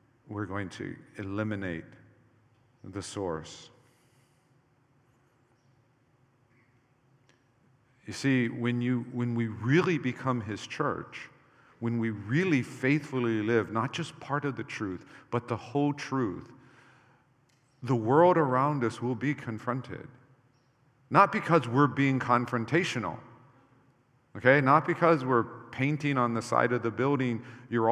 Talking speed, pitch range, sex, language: 120 wpm, 115-135 Hz, male, English